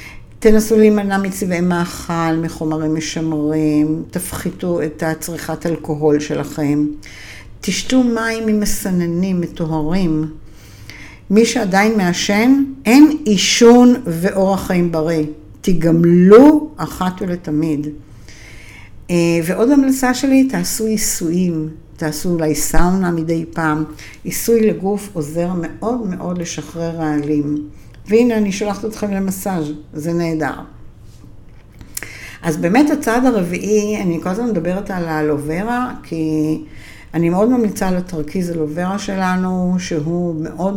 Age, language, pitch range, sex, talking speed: 60-79, Hebrew, 155-195 Hz, female, 105 wpm